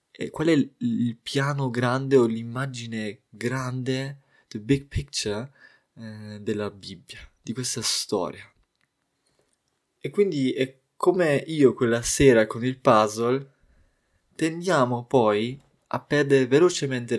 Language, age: Italian, 20-39